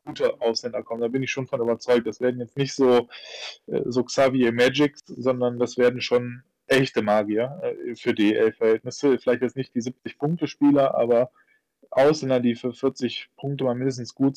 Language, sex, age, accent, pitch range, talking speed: German, male, 20-39, German, 120-135 Hz, 165 wpm